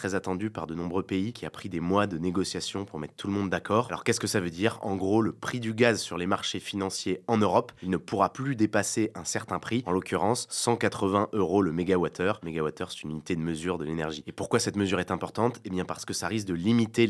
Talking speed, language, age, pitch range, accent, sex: 265 wpm, French, 20-39, 90-110 Hz, French, male